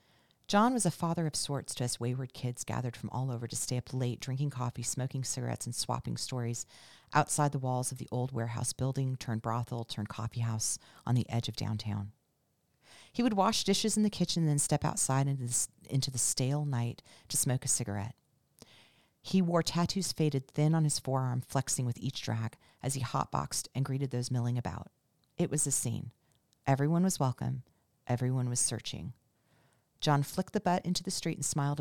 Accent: American